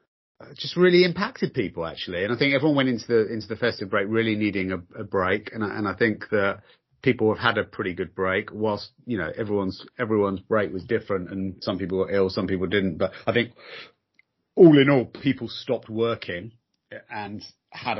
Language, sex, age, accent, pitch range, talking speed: English, male, 30-49, British, 95-130 Hz, 200 wpm